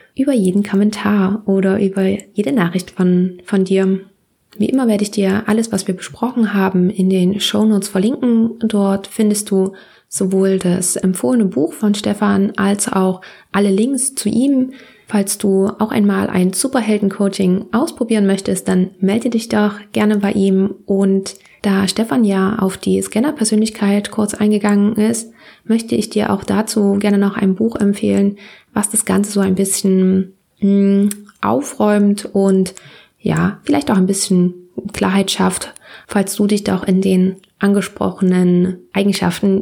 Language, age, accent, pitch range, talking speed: German, 20-39, German, 195-215 Hz, 150 wpm